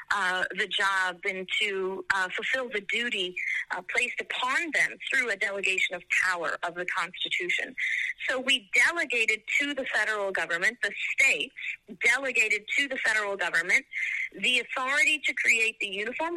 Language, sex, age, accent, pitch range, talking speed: English, female, 40-59, American, 200-300 Hz, 150 wpm